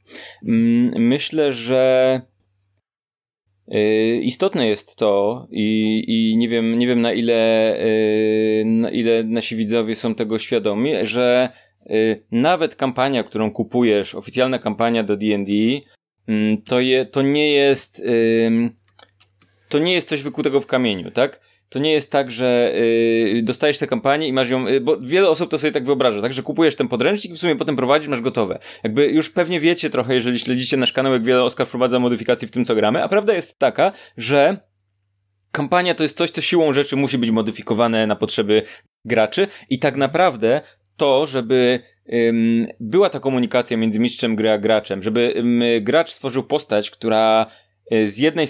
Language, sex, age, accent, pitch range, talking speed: Polish, male, 20-39, native, 110-140 Hz, 155 wpm